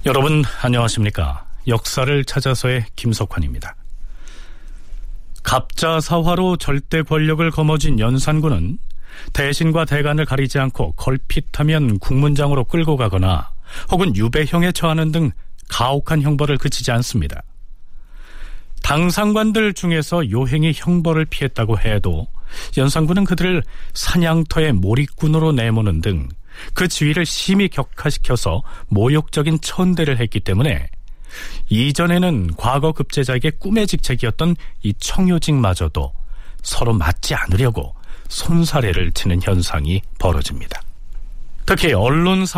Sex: male